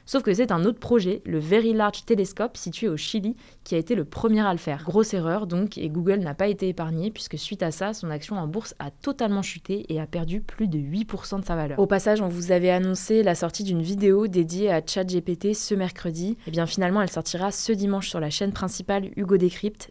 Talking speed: 235 wpm